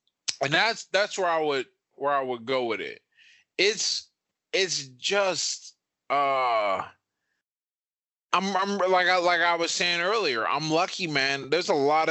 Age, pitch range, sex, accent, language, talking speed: 20-39, 110-150 Hz, male, American, English, 155 wpm